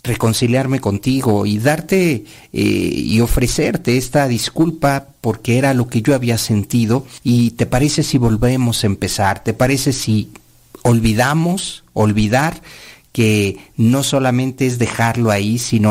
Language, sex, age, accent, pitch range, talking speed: Spanish, male, 50-69, Mexican, 105-135 Hz, 130 wpm